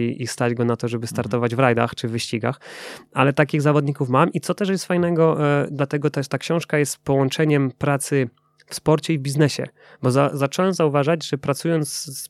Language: Polish